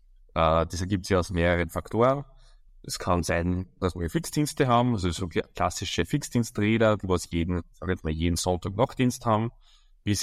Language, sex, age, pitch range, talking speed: German, male, 20-39, 90-115 Hz, 170 wpm